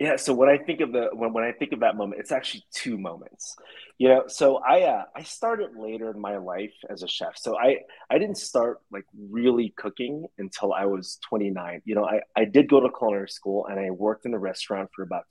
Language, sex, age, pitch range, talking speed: English, male, 30-49, 100-135 Hz, 240 wpm